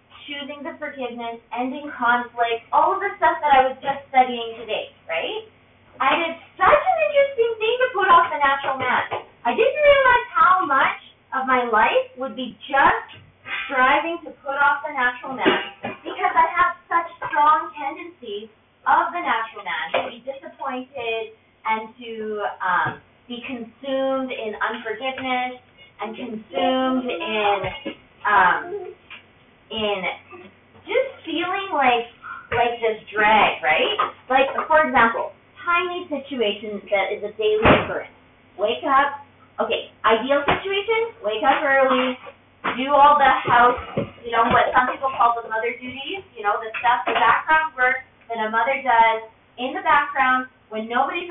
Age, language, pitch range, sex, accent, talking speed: 30-49, English, 225-295 Hz, female, American, 145 wpm